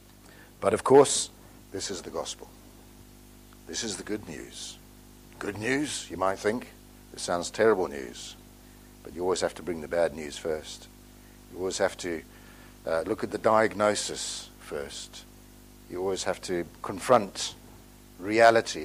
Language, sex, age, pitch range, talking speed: English, male, 60-79, 95-110 Hz, 150 wpm